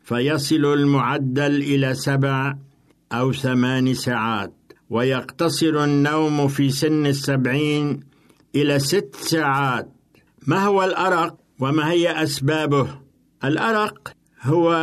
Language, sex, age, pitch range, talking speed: Arabic, male, 60-79, 135-155 Hz, 95 wpm